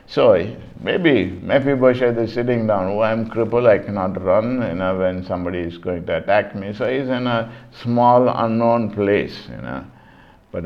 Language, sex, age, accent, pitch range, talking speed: English, male, 50-69, Indian, 90-115 Hz, 180 wpm